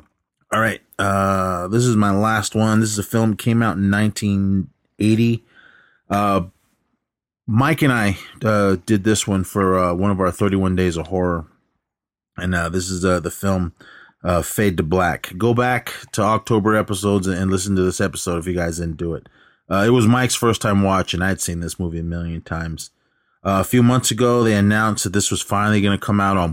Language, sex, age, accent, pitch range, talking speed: English, male, 30-49, American, 90-110 Hz, 205 wpm